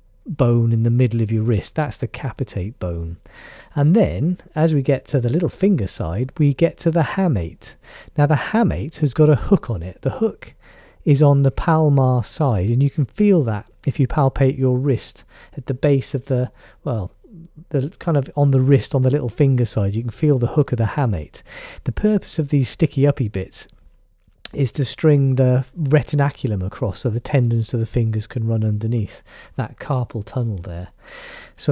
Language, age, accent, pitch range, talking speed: English, 40-59, British, 110-150 Hz, 195 wpm